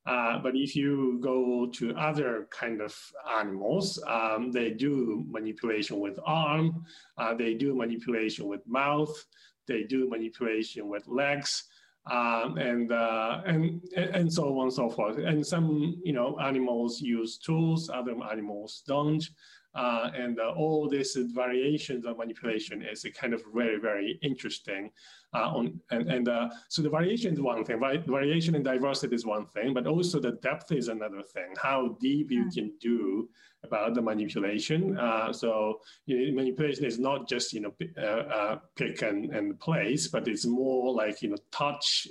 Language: English